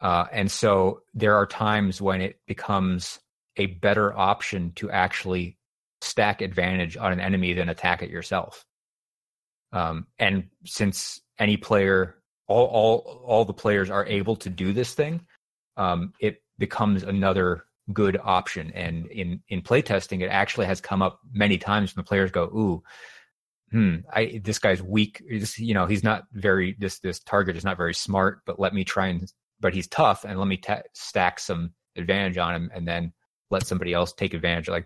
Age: 30-49